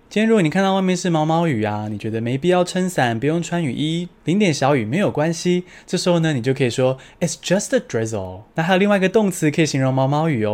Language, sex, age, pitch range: Chinese, male, 20-39, 115-180 Hz